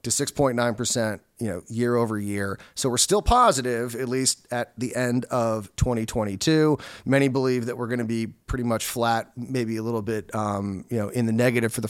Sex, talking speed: male, 195 wpm